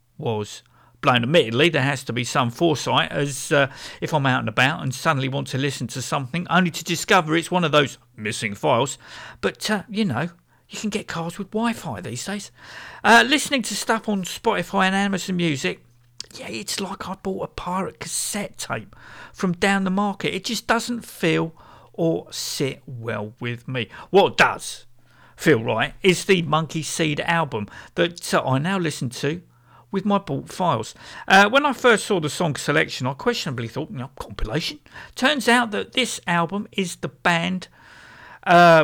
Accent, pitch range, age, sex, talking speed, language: British, 125-190 Hz, 50-69, male, 180 wpm, English